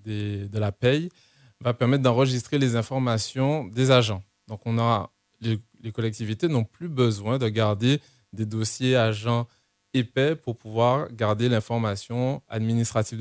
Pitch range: 110-130 Hz